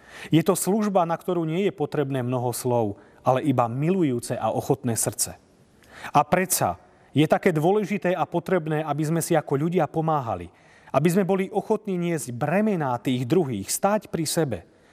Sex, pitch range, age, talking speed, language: male, 125-180 Hz, 40-59, 160 wpm, Slovak